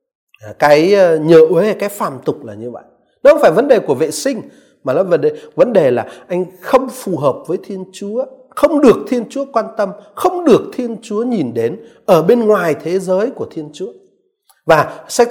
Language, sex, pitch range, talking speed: Vietnamese, male, 175-280 Hz, 210 wpm